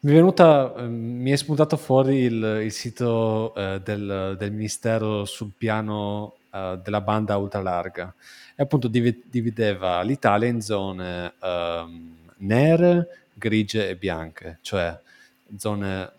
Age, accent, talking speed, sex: 30-49, native, 115 wpm, male